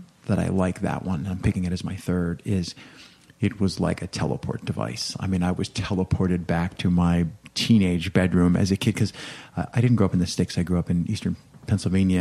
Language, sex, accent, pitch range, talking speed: English, male, American, 90-105 Hz, 225 wpm